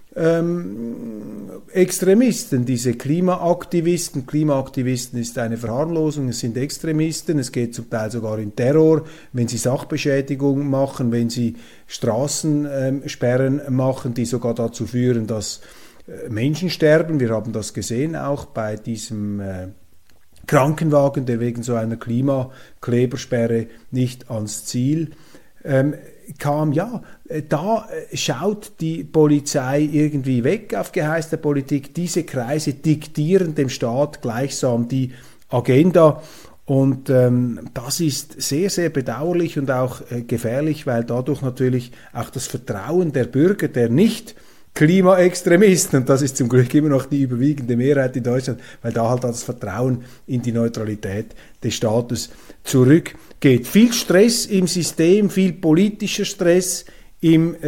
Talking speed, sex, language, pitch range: 125 wpm, male, German, 125-160 Hz